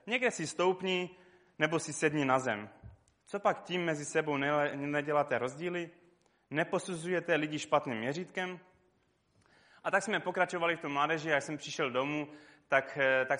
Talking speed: 145 wpm